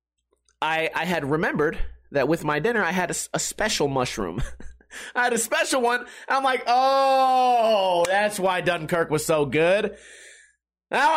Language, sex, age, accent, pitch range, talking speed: English, male, 30-49, American, 145-225 Hz, 155 wpm